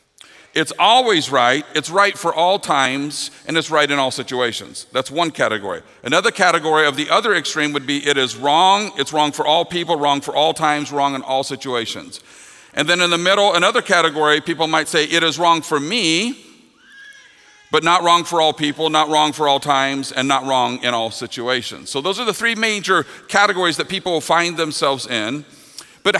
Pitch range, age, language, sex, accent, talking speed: 145-205 Hz, 50-69, English, male, American, 200 wpm